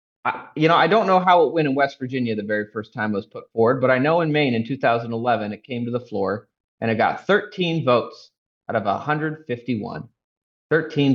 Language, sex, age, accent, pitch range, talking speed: English, male, 30-49, American, 120-155 Hz, 215 wpm